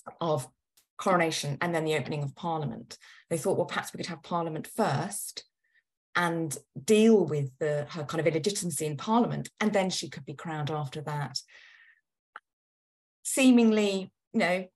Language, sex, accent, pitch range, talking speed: English, female, British, 170-230 Hz, 150 wpm